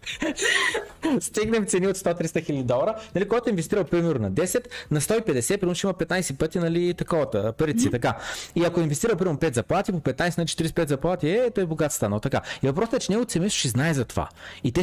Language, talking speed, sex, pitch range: Bulgarian, 205 wpm, male, 135-175 Hz